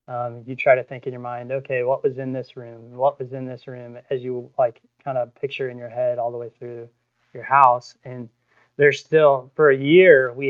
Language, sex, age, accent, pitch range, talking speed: English, male, 20-39, American, 120-140 Hz, 235 wpm